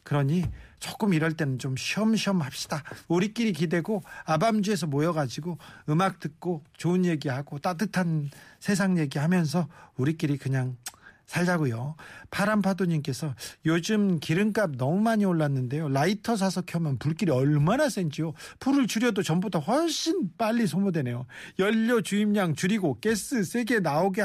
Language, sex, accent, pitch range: Korean, male, native, 145-210 Hz